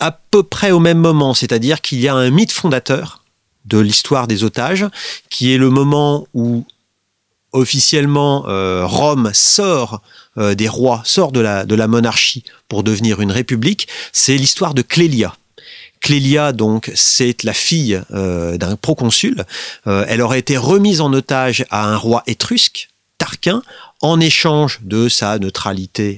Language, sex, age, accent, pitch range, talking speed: French, male, 40-59, French, 110-150 Hz, 155 wpm